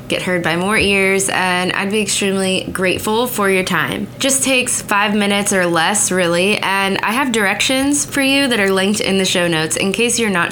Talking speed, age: 210 wpm, 20-39